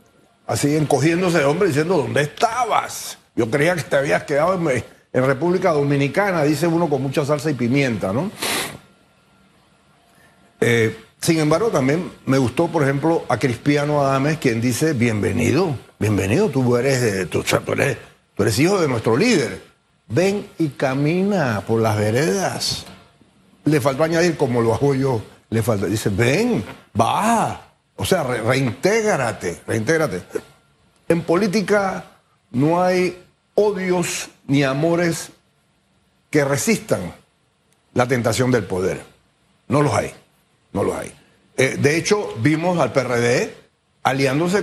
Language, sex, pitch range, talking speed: Spanish, male, 125-165 Hz, 130 wpm